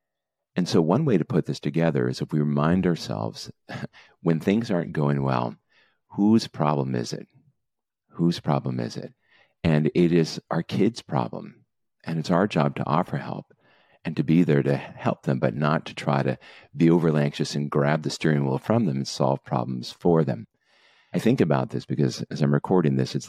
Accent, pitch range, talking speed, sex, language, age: American, 70-85 Hz, 195 wpm, male, English, 50-69